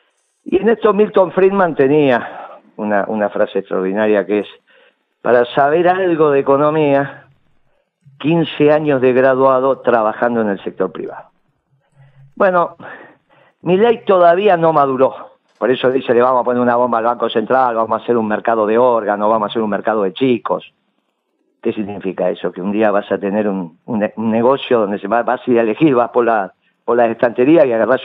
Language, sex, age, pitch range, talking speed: Spanish, male, 50-69, 110-145 Hz, 180 wpm